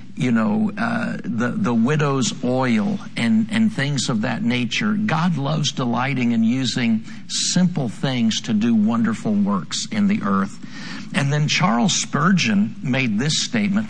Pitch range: 150-215 Hz